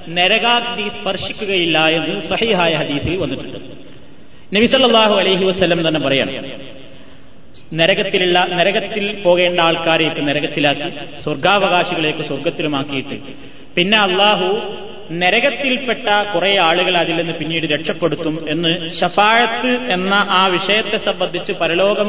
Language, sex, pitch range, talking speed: Malayalam, male, 160-210 Hz, 90 wpm